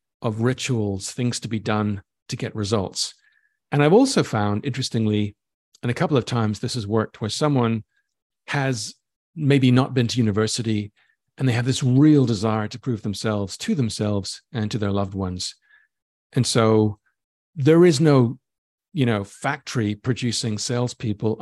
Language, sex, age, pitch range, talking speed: English, male, 50-69, 110-135 Hz, 155 wpm